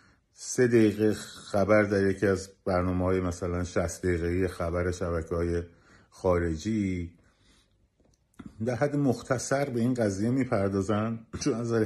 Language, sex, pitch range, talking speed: Persian, male, 95-125 Hz, 115 wpm